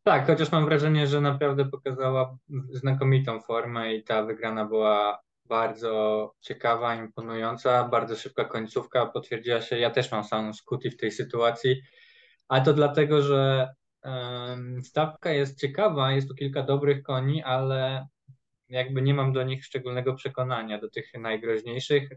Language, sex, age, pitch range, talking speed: Polish, male, 20-39, 115-135 Hz, 145 wpm